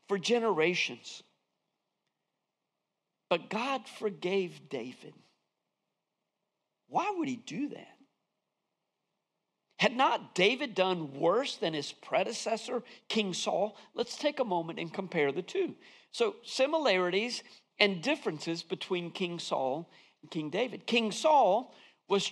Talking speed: 115 wpm